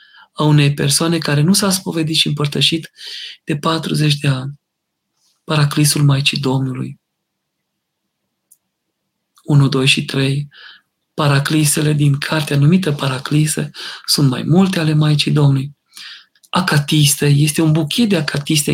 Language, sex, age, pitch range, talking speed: Romanian, male, 40-59, 145-180 Hz, 120 wpm